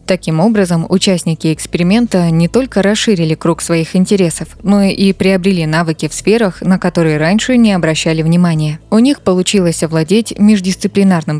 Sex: female